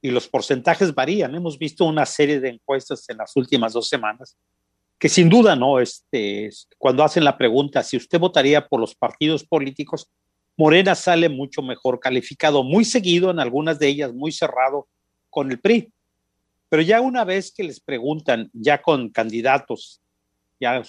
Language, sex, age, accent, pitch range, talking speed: Spanish, male, 40-59, Mexican, 130-170 Hz, 165 wpm